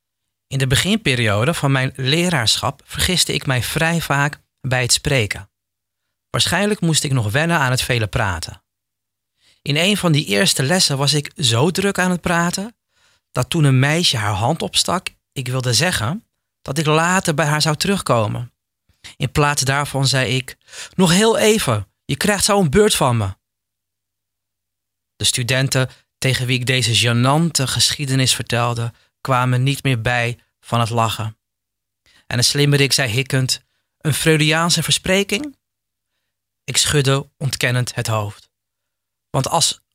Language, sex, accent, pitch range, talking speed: Dutch, male, Dutch, 110-155 Hz, 145 wpm